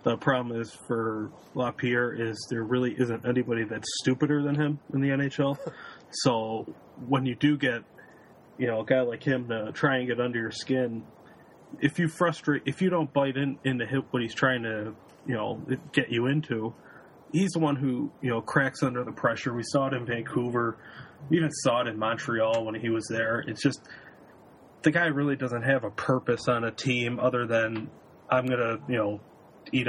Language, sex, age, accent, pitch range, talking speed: English, male, 30-49, American, 115-140 Hz, 200 wpm